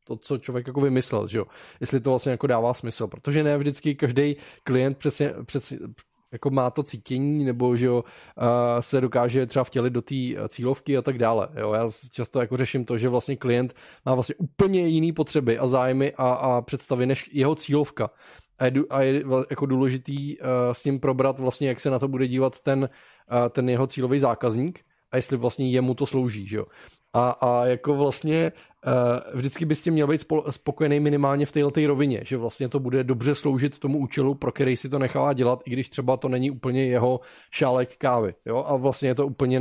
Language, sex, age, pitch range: Czech, male, 20-39, 125-145 Hz